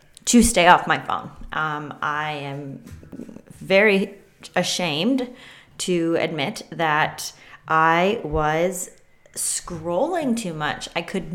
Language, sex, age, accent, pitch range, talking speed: English, female, 20-39, American, 150-180 Hz, 105 wpm